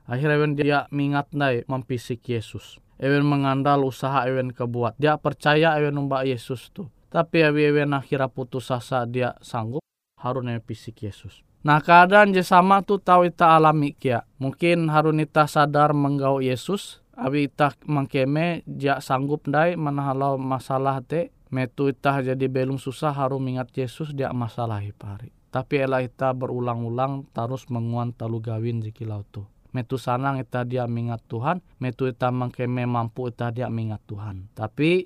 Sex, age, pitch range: male, 20-39, 120-145 Hz